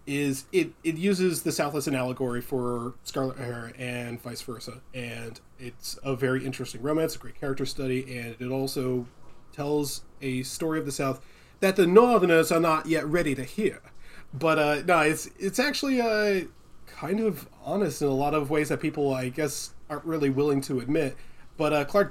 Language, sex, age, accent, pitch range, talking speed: English, male, 20-39, American, 125-155 Hz, 190 wpm